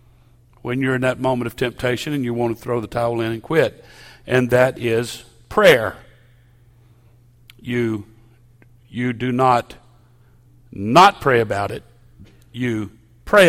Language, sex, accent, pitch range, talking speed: English, male, American, 120-130 Hz, 140 wpm